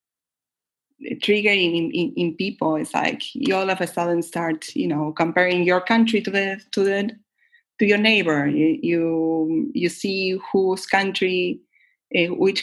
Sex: female